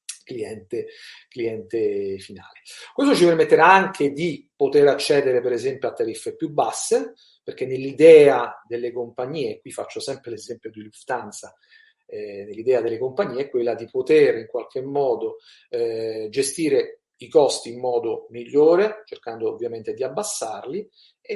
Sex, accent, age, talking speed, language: male, native, 40-59, 140 wpm, Italian